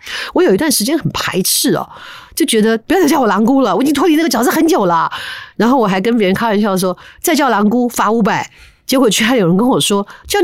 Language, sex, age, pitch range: Chinese, female, 50-69, 170-245 Hz